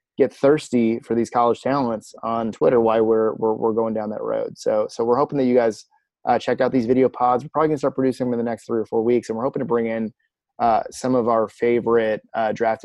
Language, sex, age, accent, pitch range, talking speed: English, male, 20-39, American, 110-125 Hz, 255 wpm